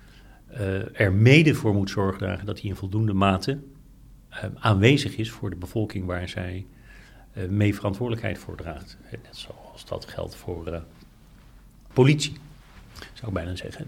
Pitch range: 100-125 Hz